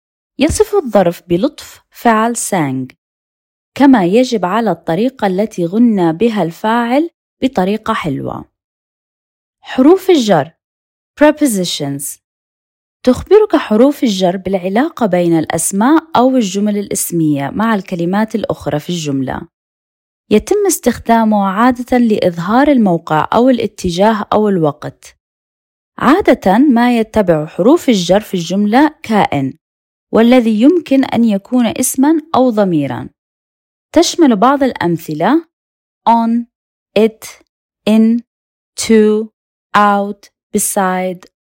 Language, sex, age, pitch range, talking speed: Arabic, female, 20-39, 180-255 Hz, 95 wpm